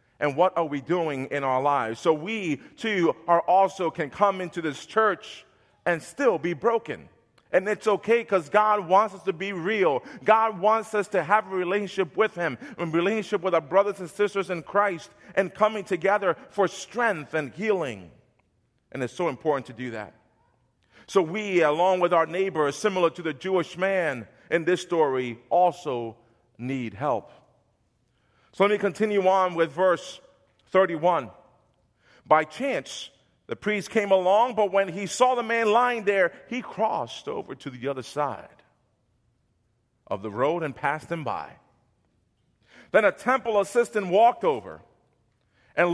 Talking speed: 160 wpm